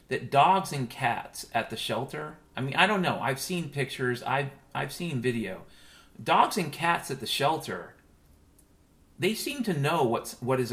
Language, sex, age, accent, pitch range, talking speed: English, male, 40-59, American, 115-180 Hz, 185 wpm